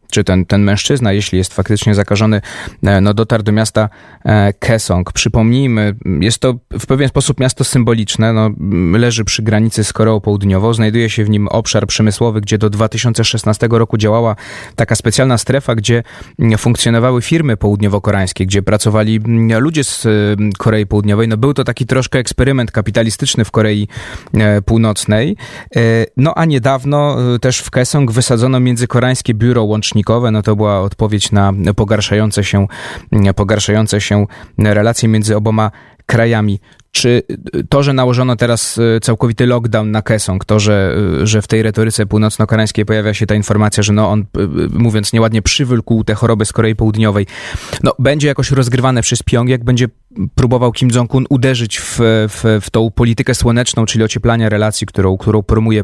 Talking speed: 150 wpm